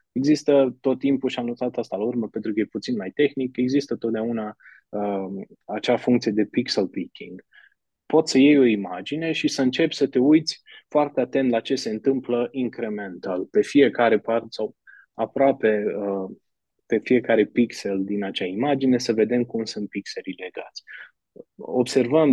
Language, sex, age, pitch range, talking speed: Romanian, male, 20-39, 105-135 Hz, 160 wpm